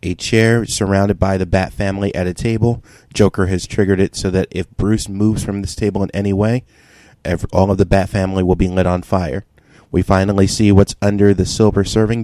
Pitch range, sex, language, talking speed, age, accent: 95-115 Hz, male, English, 210 wpm, 30-49, American